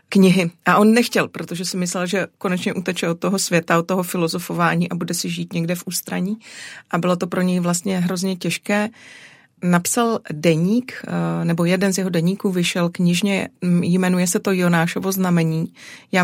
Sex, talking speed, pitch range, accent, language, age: female, 170 wpm, 170-190 Hz, native, Czech, 30-49